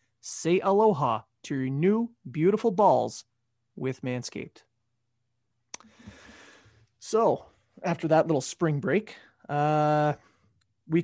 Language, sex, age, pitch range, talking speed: English, male, 30-49, 125-175 Hz, 90 wpm